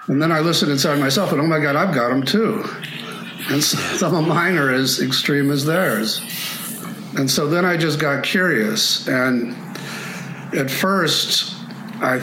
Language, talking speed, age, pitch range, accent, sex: English, 165 wpm, 50-69, 120-165 Hz, American, male